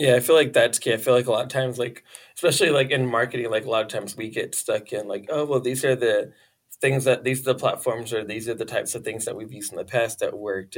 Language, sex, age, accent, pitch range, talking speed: English, male, 20-39, American, 105-130 Hz, 300 wpm